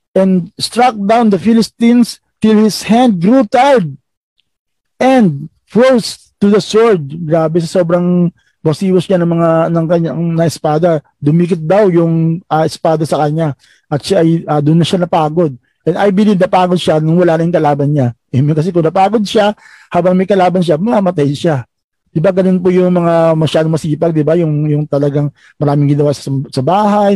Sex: male